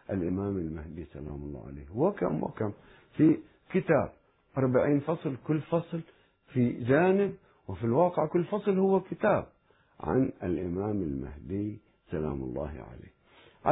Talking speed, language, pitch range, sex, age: 120 wpm, Arabic, 95-145 Hz, male, 60-79